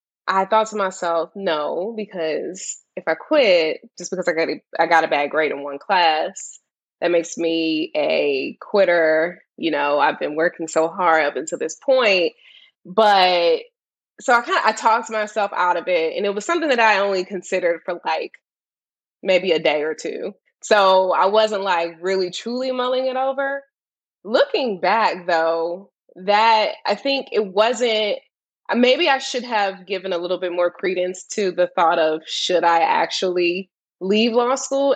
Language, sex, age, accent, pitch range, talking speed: English, female, 20-39, American, 175-235 Hz, 175 wpm